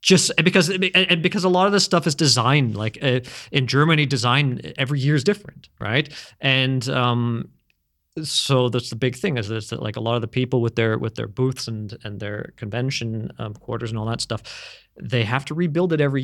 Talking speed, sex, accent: 210 wpm, male, American